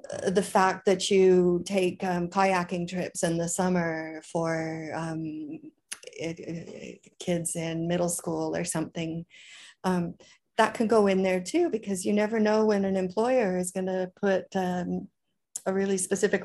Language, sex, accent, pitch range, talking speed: English, female, American, 160-195 Hz, 145 wpm